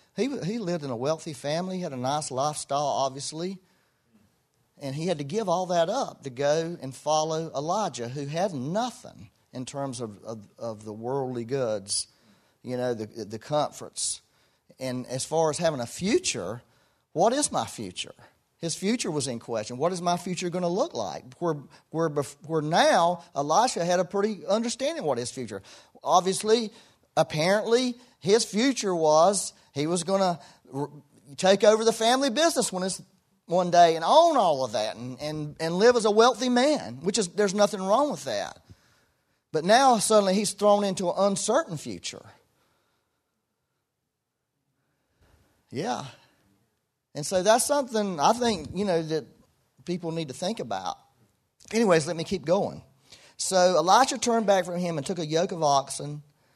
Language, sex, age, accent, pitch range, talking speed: English, male, 40-59, American, 135-200 Hz, 165 wpm